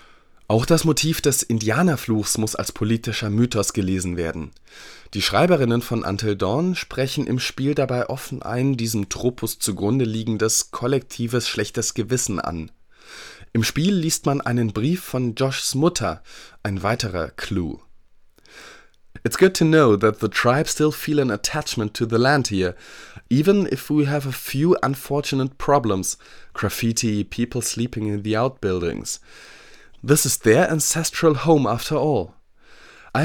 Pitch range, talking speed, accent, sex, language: 110-145 Hz, 145 wpm, German, male, German